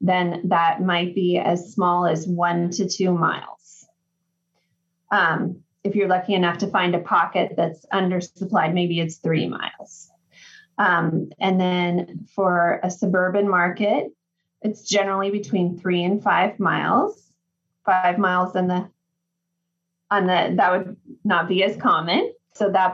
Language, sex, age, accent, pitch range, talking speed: English, female, 20-39, American, 175-200 Hz, 140 wpm